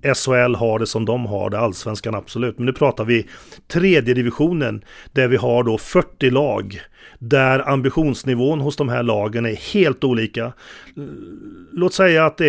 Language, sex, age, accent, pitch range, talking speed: English, male, 40-59, Swedish, 125-150 Hz, 165 wpm